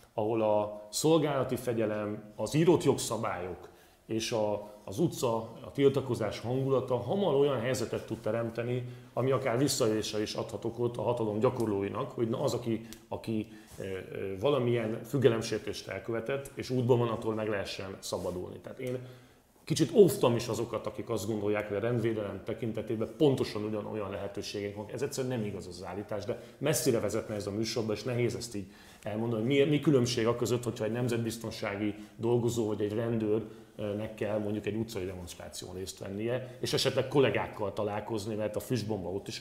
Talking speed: 160 wpm